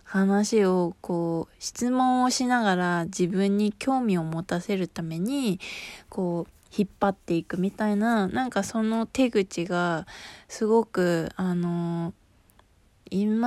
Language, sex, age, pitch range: Japanese, female, 20-39, 170-220 Hz